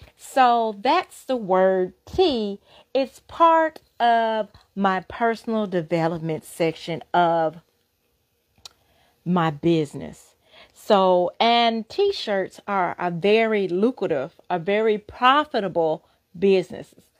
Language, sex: English, female